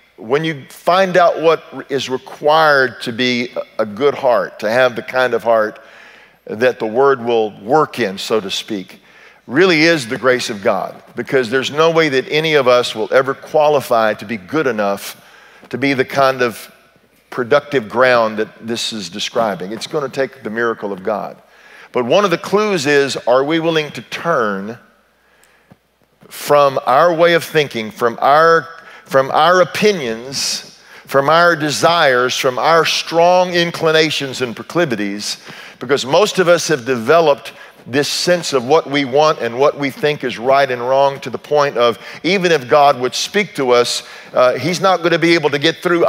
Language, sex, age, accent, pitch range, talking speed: English, male, 50-69, American, 125-165 Hz, 180 wpm